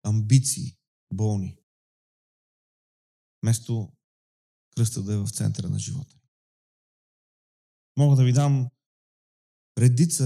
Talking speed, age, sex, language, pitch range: 90 wpm, 40-59, male, Bulgarian, 110-135 Hz